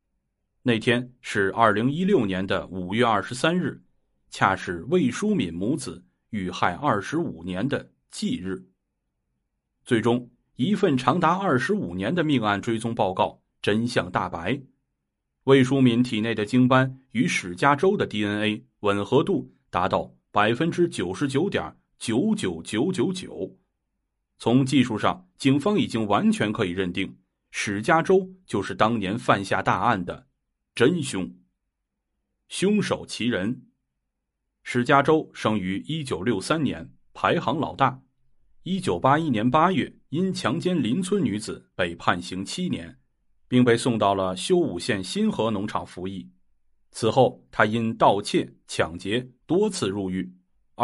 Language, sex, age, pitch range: Chinese, male, 30-49, 95-135 Hz